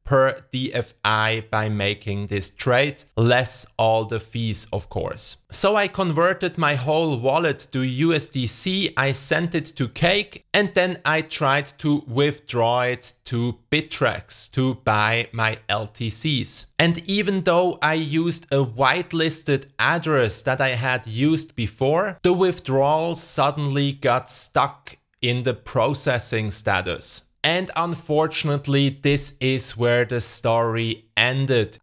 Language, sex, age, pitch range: English, male, 30-49, 120-155 Hz